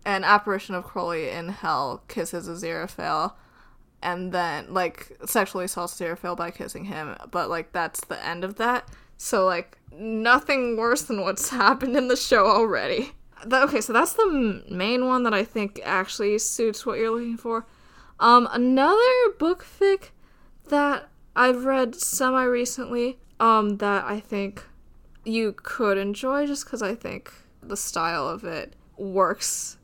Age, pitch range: 10-29, 190-250 Hz